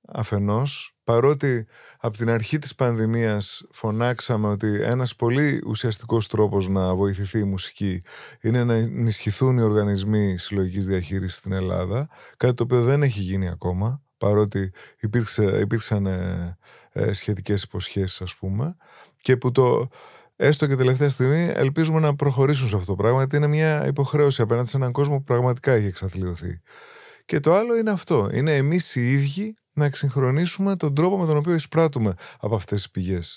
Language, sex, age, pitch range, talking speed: Greek, male, 20-39, 105-145 Hz, 160 wpm